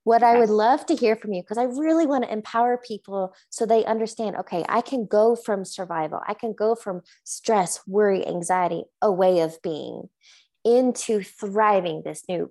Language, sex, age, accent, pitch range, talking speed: English, female, 20-39, American, 180-230 Hz, 185 wpm